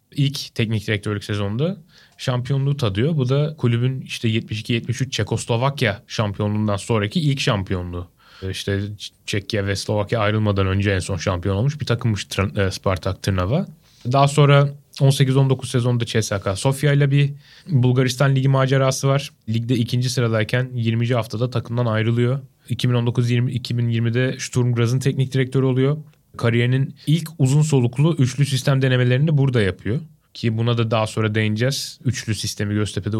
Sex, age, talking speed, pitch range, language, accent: male, 10-29, 130 wpm, 115-140 Hz, Turkish, native